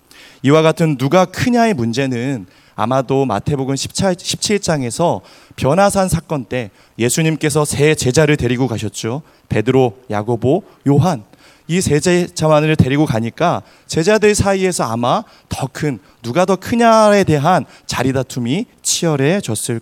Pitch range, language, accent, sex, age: 120-160 Hz, Korean, native, male, 30-49